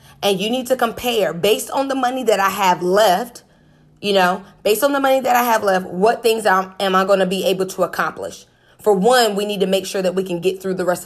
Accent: American